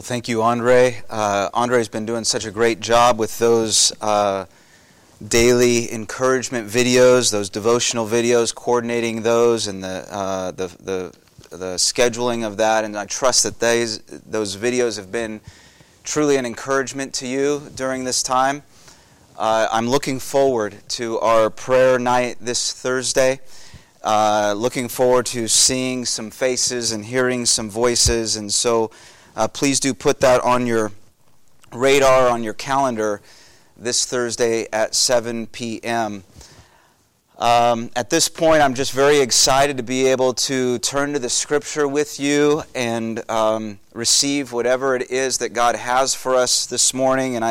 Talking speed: 150 wpm